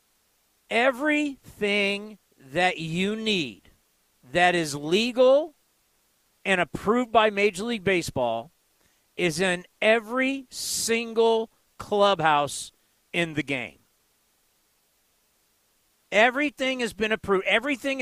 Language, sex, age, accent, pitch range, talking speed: English, male, 40-59, American, 175-245 Hz, 85 wpm